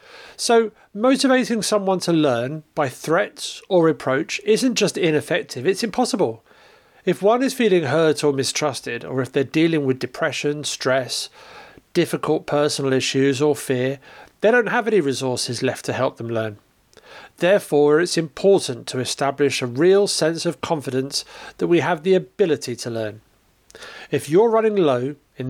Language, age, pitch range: English, 40-59, 135-190 Hz